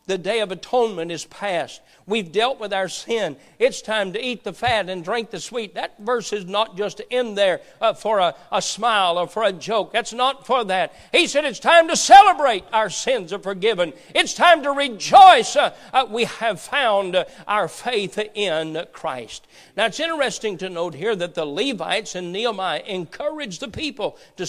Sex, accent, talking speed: male, American, 185 wpm